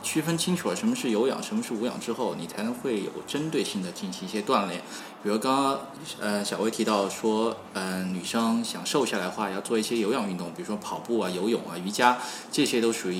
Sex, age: male, 20-39